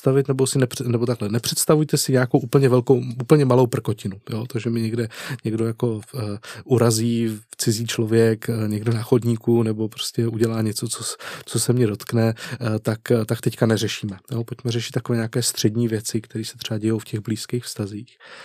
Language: Czech